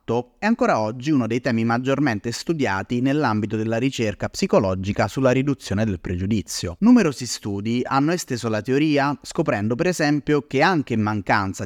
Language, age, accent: Italian, 30-49, native